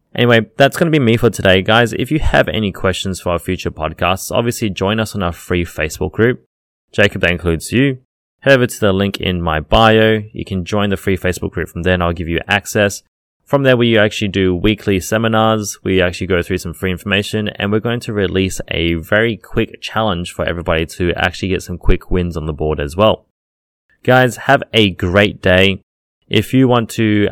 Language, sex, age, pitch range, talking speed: English, male, 20-39, 85-110 Hz, 215 wpm